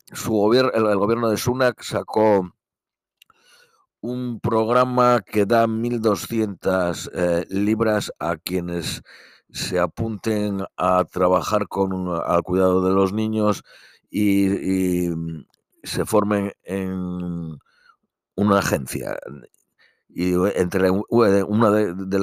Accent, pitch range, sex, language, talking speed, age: Spanish, 95-115 Hz, male, Spanish, 100 wpm, 60-79